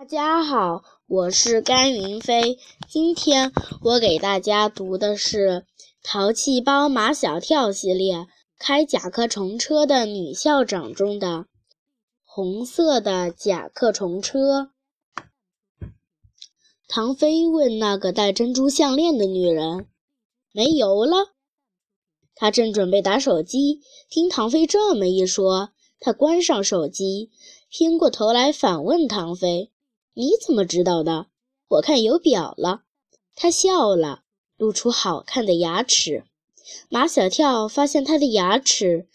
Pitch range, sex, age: 190-285 Hz, female, 10-29